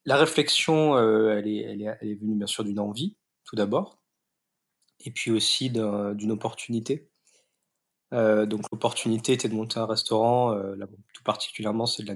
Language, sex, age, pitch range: French, male, 20-39, 105-120 Hz